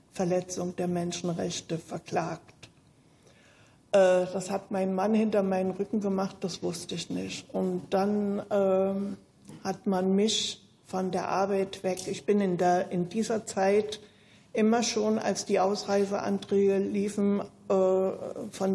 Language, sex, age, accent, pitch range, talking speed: German, female, 60-79, German, 190-210 Hz, 125 wpm